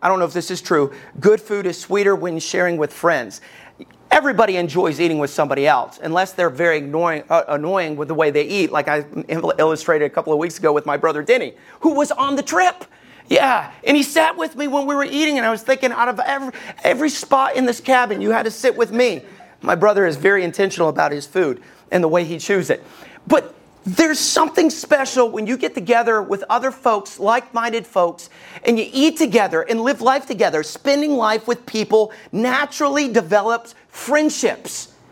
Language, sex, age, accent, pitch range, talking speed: English, male, 40-59, American, 175-255 Hz, 205 wpm